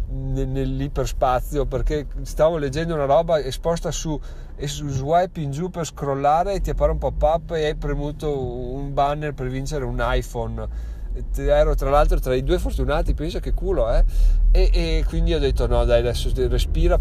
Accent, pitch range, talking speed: native, 95-140 Hz, 185 wpm